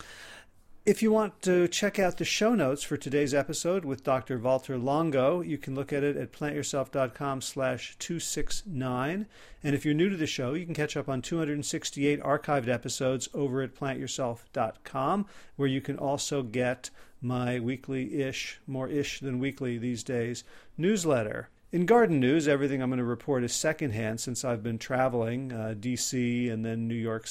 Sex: male